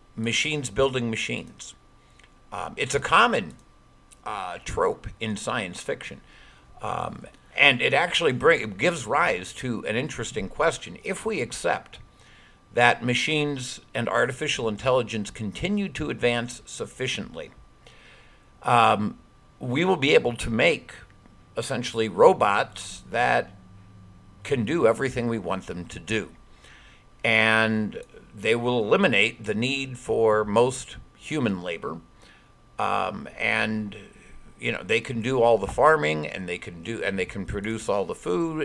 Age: 50-69